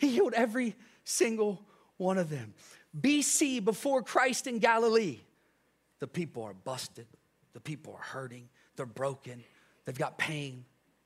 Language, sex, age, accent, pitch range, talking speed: English, male, 40-59, American, 150-240 Hz, 135 wpm